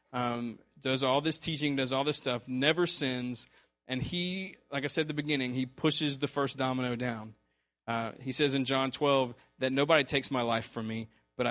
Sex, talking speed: male, 205 wpm